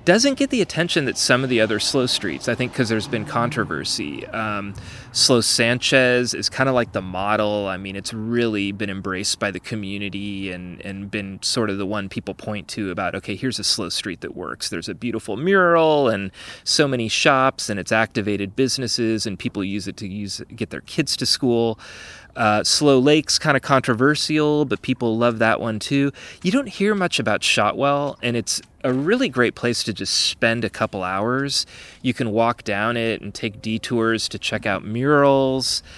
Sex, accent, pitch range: male, American, 105-135 Hz